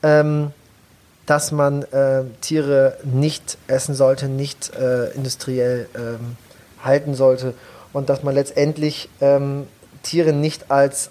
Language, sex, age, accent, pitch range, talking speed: German, male, 30-49, German, 135-165 Hz, 120 wpm